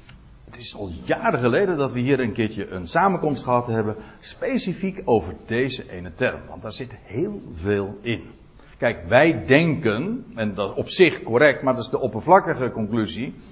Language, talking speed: Dutch, 180 wpm